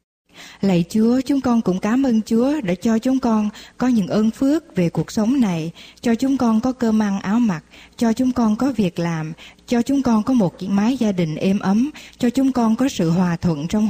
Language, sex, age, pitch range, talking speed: Vietnamese, female, 20-39, 185-240 Hz, 230 wpm